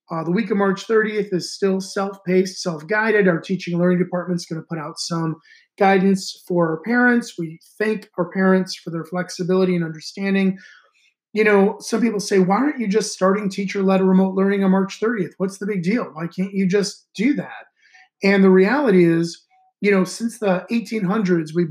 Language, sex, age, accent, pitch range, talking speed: English, male, 30-49, American, 180-215 Hz, 195 wpm